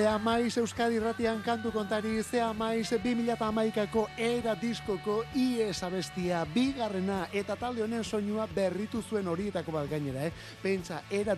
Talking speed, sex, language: 130 wpm, male, Spanish